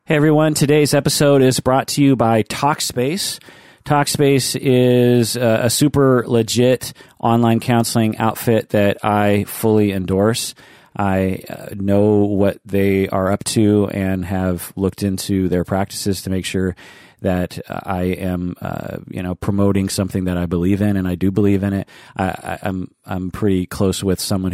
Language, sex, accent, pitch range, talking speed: English, male, American, 90-110 Hz, 160 wpm